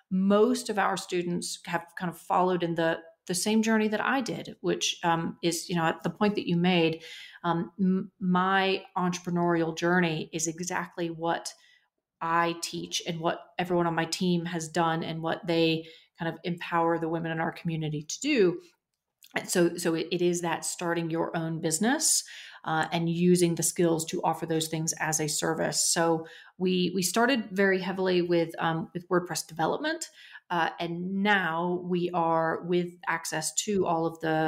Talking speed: 180 wpm